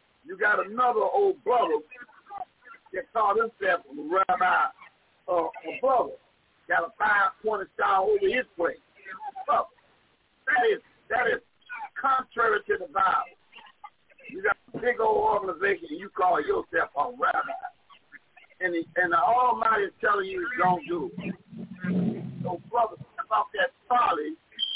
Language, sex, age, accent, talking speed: English, male, 50-69, American, 140 wpm